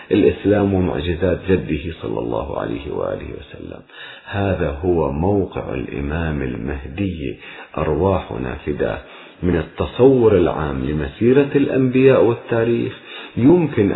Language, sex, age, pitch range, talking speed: Arabic, male, 50-69, 95-155 Hz, 95 wpm